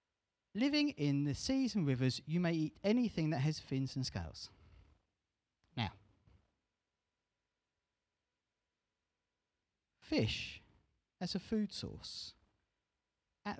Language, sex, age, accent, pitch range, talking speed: English, male, 40-59, British, 95-145 Hz, 95 wpm